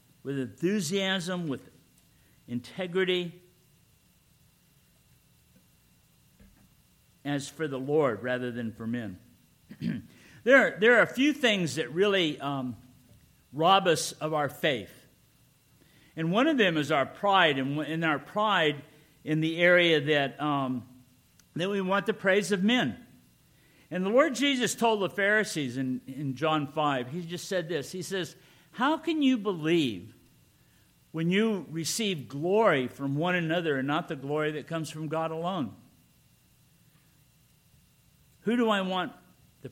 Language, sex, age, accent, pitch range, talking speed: English, male, 50-69, American, 135-185 Hz, 135 wpm